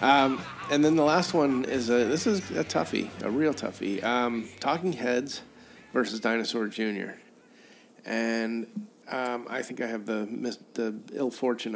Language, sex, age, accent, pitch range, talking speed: English, male, 30-49, American, 110-125 Hz, 160 wpm